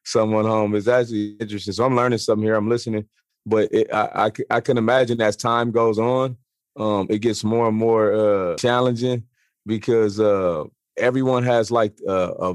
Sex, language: male, English